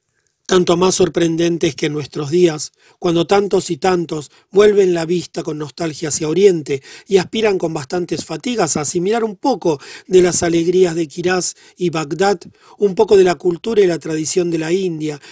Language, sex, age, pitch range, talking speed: Spanish, male, 40-59, 160-190 Hz, 180 wpm